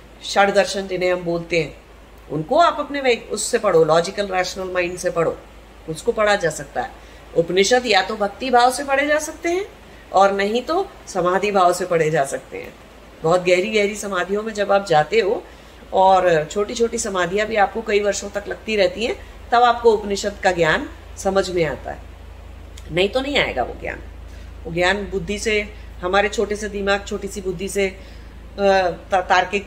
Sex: female